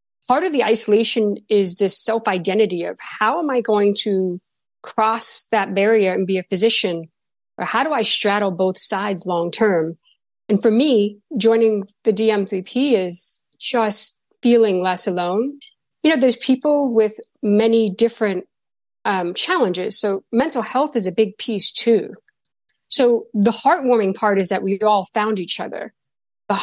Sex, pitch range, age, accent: female, 200-245 Hz, 50-69, American